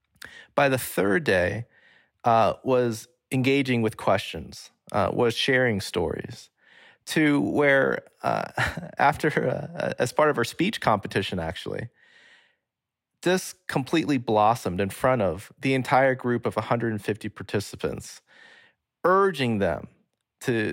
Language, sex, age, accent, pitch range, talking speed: English, male, 30-49, American, 110-150 Hz, 115 wpm